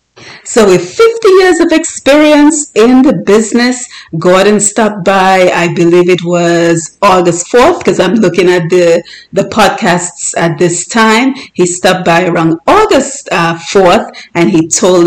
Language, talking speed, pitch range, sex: English, 150 wpm, 170-240 Hz, female